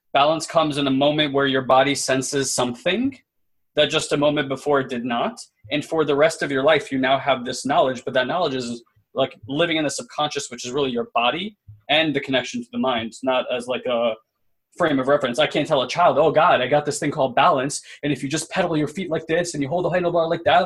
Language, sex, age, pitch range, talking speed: English, male, 20-39, 125-150 Hz, 250 wpm